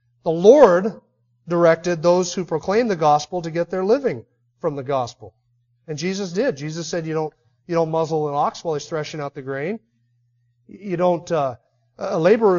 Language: English